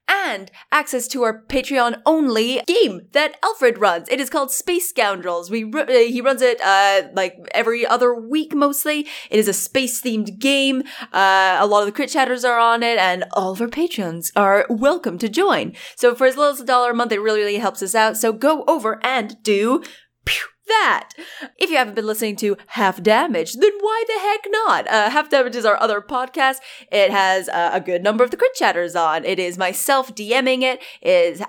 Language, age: English, 20-39